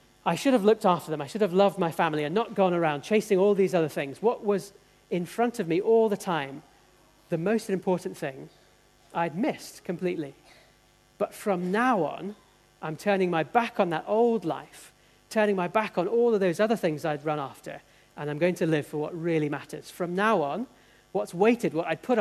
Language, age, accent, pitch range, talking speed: English, 40-59, British, 150-190 Hz, 210 wpm